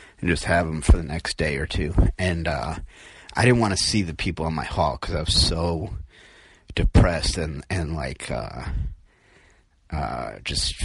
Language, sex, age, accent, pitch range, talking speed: English, male, 30-49, American, 80-95 Hz, 185 wpm